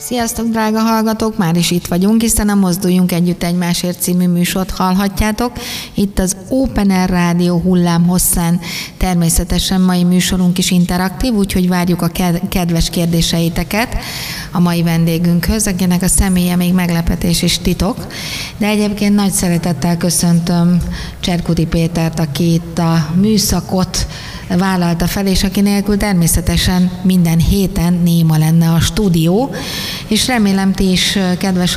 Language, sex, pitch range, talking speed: Hungarian, female, 170-190 Hz, 130 wpm